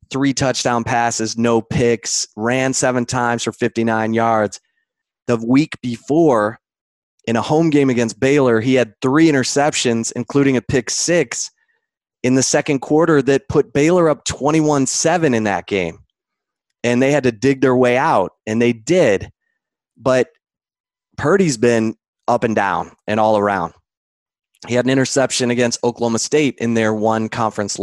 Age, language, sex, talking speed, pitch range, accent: 20-39, English, male, 155 wpm, 115-135 Hz, American